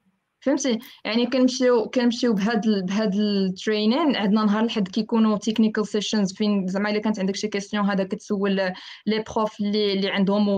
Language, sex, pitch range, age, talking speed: Arabic, female, 200-245 Hz, 20-39, 145 wpm